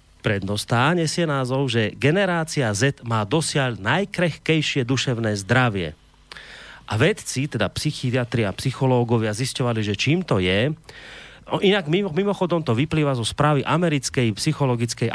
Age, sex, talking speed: 30-49, male, 120 wpm